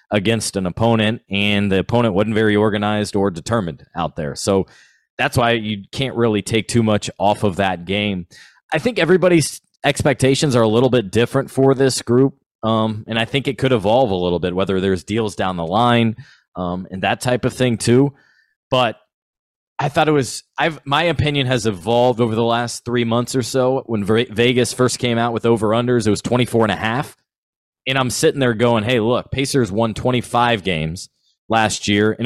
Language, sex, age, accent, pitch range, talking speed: English, male, 20-39, American, 100-125 Hz, 195 wpm